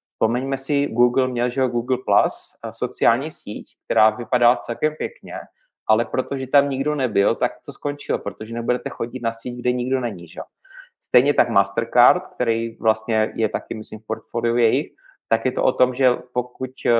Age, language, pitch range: 30-49, Czech, 115-130 Hz